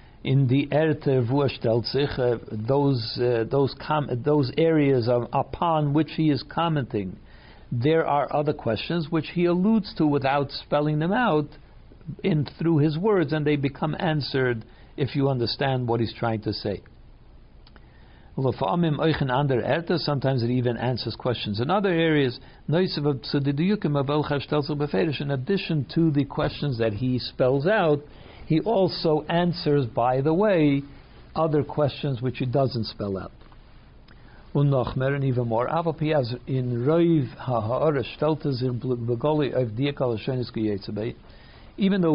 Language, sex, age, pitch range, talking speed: English, male, 60-79, 125-155 Hz, 105 wpm